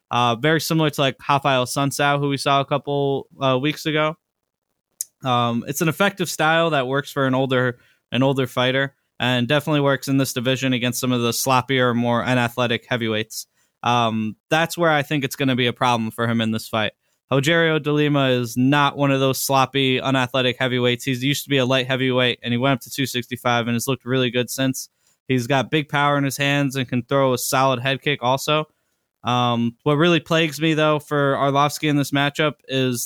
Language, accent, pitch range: English, American, 125-145 Hz